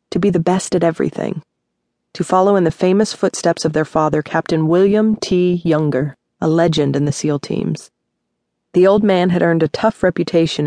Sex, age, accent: female, 30-49, American